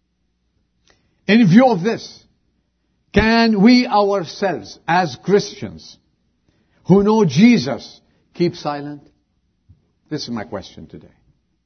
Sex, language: male, English